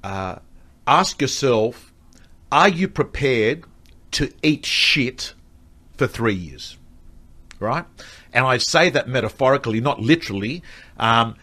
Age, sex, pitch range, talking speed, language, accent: 50-69, male, 110-145 Hz, 105 wpm, English, Australian